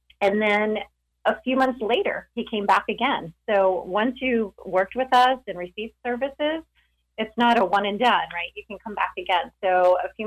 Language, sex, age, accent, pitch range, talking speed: English, female, 30-49, American, 170-210 Hz, 200 wpm